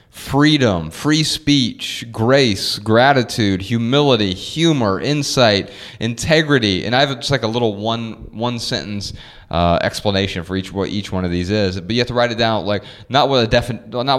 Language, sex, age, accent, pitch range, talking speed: English, male, 30-49, American, 100-125 Hz, 180 wpm